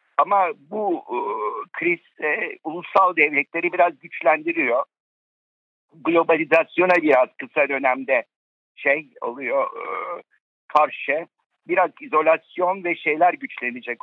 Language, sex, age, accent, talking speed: Turkish, male, 60-79, native, 95 wpm